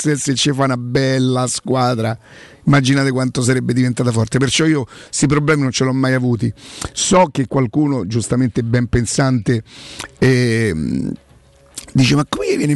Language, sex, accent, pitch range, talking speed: Italian, male, native, 125-155 Hz, 155 wpm